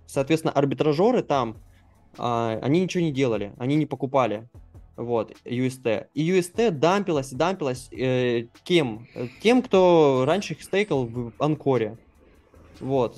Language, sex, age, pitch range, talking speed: Russian, male, 20-39, 115-155 Hz, 120 wpm